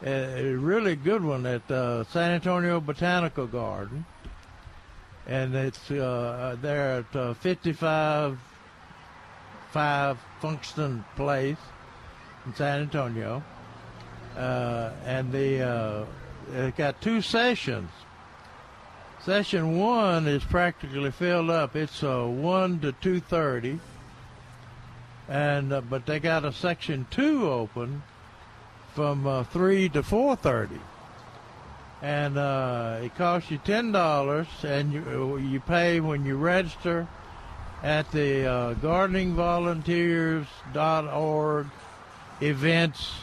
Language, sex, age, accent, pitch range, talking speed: English, male, 60-79, American, 125-160 Hz, 100 wpm